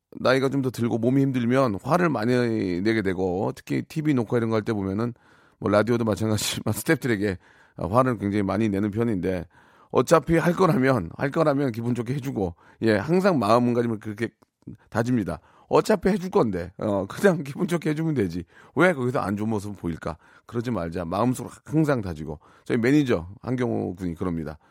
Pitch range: 100-150 Hz